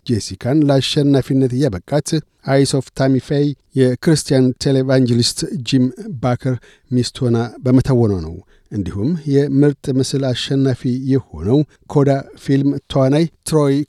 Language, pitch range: Amharic, 125-145 Hz